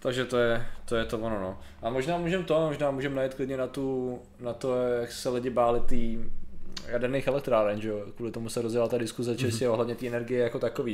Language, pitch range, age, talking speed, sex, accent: Czech, 120-140 Hz, 20-39, 230 wpm, male, native